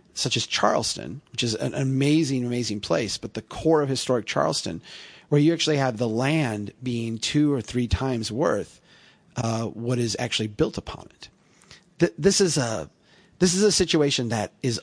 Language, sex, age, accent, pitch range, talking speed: English, male, 40-59, American, 115-145 Hz, 165 wpm